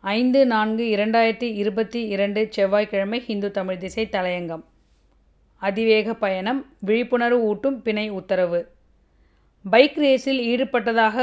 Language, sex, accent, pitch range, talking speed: Tamil, female, native, 210-250 Hz, 100 wpm